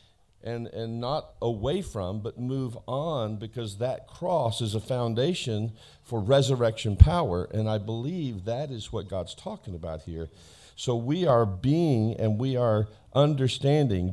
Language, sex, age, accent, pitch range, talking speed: English, male, 50-69, American, 100-130 Hz, 150 wpm